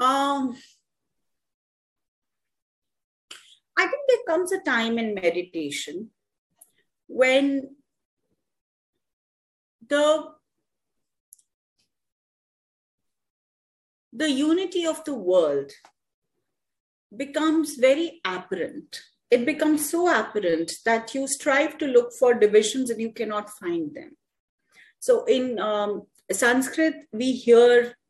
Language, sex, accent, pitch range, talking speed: English, female, Indian, 210-300 Hz, 90 wpm